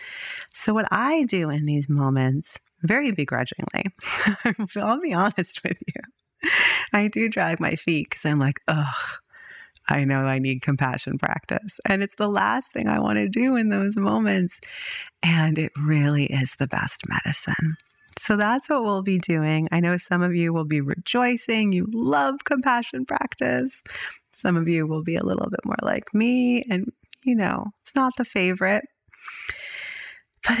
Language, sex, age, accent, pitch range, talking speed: English, female, 30-49, American, 170-255 Hz, 165 wpm